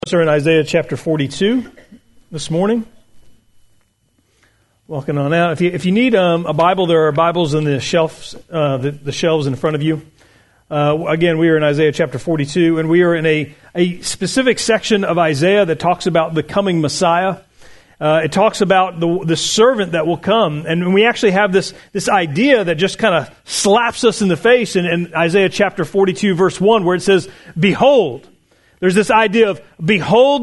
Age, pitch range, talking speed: 40-59, 160-220 Hz, 195 wpm